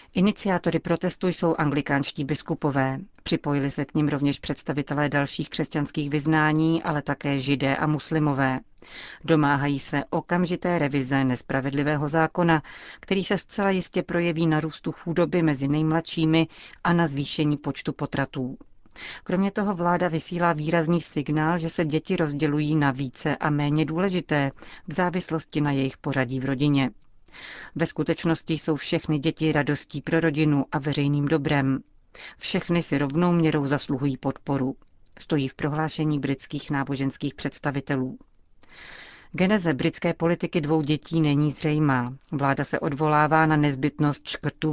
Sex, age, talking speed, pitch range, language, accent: female, 40-59, 130 wpm, 145-165 Hz, Czech, native